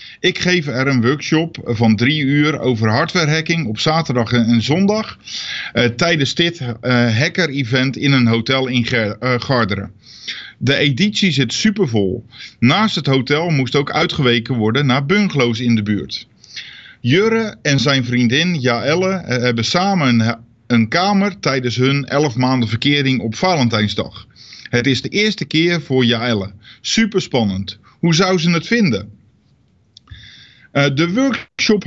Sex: male